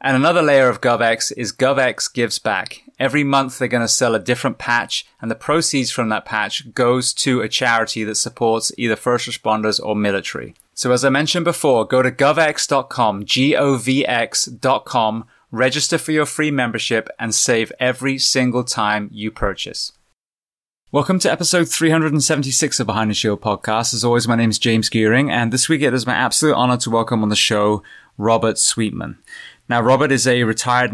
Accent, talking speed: British, 180 wpm